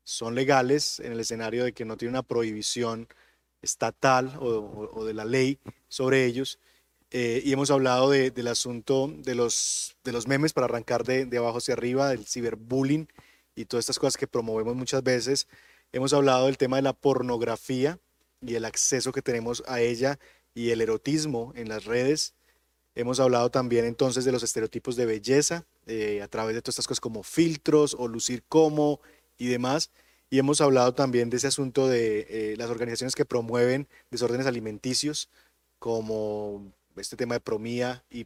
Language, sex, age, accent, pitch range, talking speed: Spanish, male, 20-39, Colombian, 120-145 Hz, 175 wpm